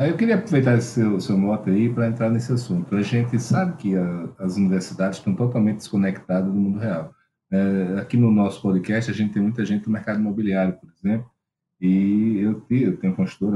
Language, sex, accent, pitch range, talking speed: Portuguese, male, Brazilian, 95-135 Hz, 195 wpm